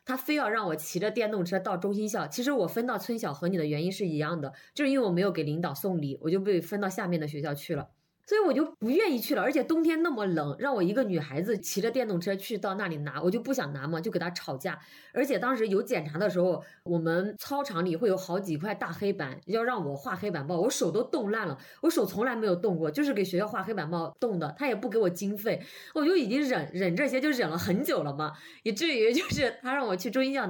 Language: Chinese